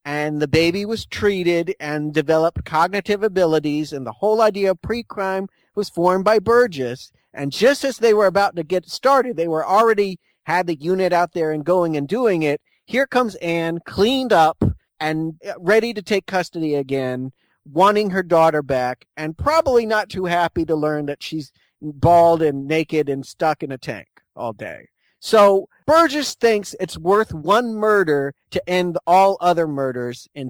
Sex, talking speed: male, 175 wpm